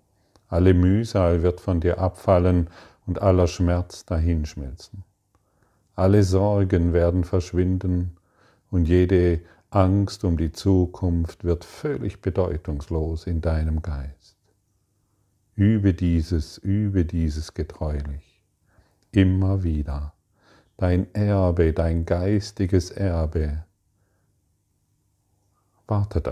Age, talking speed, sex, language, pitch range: 40-59, 90 wpm, male, German, 85-100 Hz